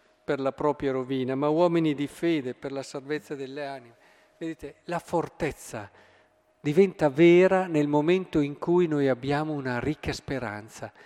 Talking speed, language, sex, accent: 145 wpm, Italian, male, native